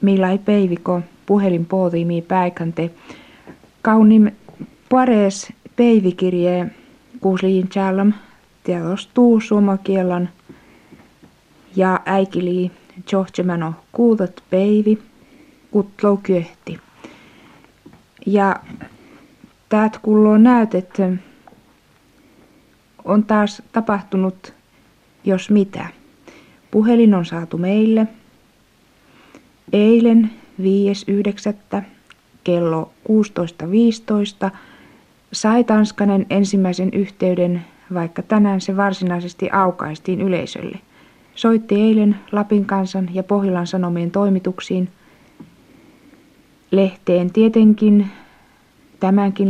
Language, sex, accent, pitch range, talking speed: Finnish, female, native, 185-220 Hz, 70 wpm